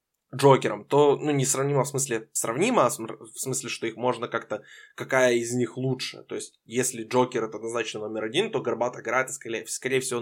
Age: 20-39